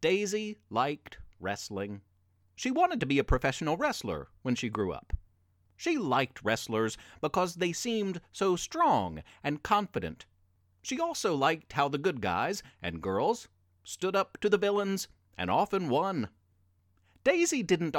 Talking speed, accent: 145 wpm, American